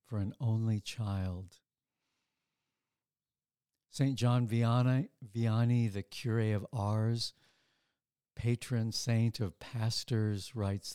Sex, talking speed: male, 95 wpm